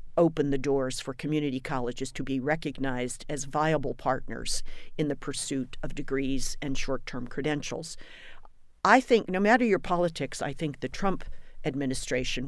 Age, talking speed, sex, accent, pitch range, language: 50-69, 150 wpm, female, American, 130-170 Hz, English